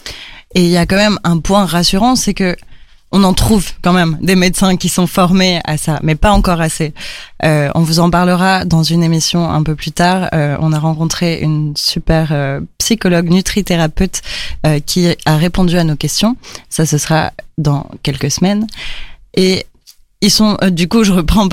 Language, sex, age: French, female, 20-39